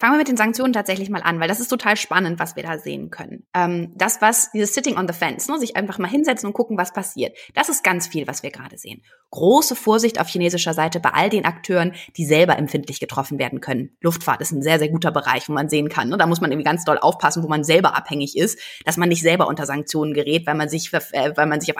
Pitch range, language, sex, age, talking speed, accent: 155-210 Hz, German, female, 20-39, 250 wpm, German